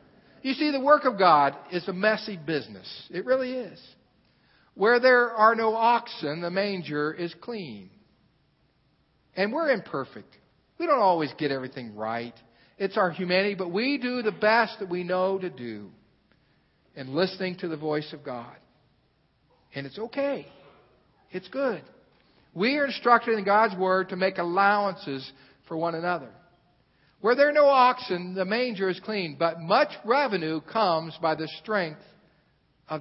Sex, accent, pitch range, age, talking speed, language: male, American, 160-230 Hz, 50-69, 155 wpm, English